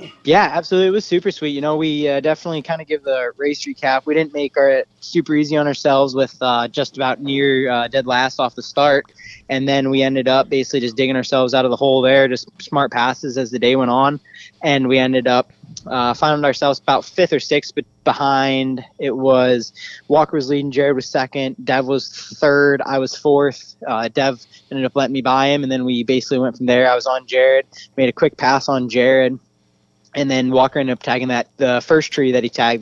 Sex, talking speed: male, 225 wpm